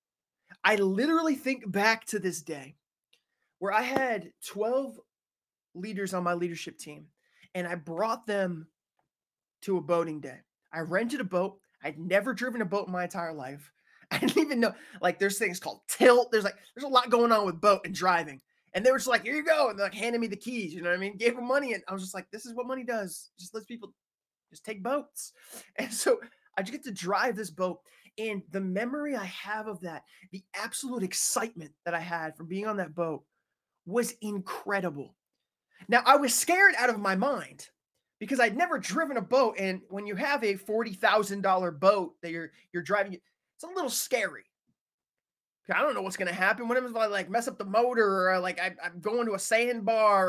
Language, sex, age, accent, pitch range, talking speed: English, male, 20-39, American, 180-240 Hz, 210 wpm